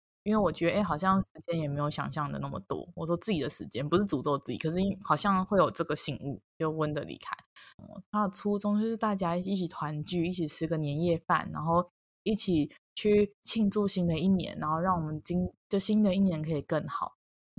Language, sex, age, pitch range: Chinese, female, 20-39, 160-200 Hz